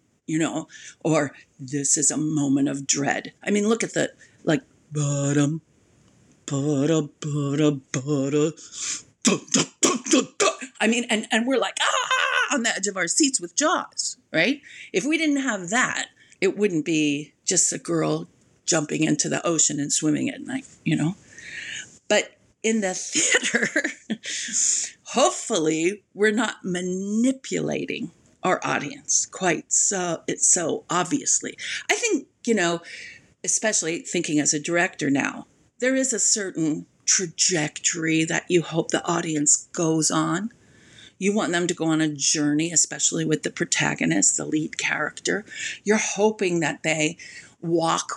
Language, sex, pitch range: English, female, 155-215 Hz